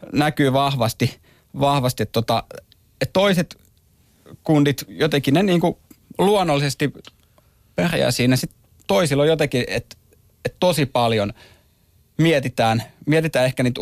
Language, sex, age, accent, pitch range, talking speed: Finnish, male, 30-49, native, 110-140 Hz, 115 wpm